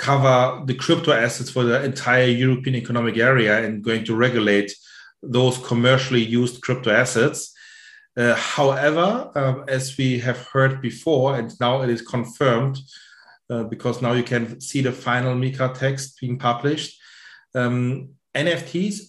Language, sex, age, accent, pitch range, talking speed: English, male, 40-59, German, 125-150 Hz, 145 wpm